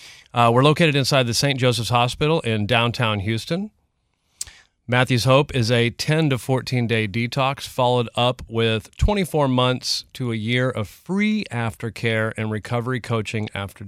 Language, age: English, 40-59